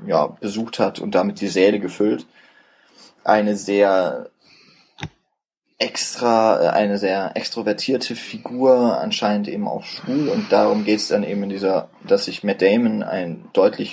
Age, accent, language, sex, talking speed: 20-39, German, German, male, 140 wpm